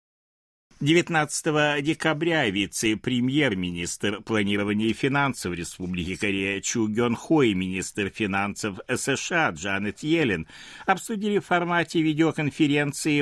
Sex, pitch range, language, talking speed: male, 100-155 Hz, Russian, 90 wpm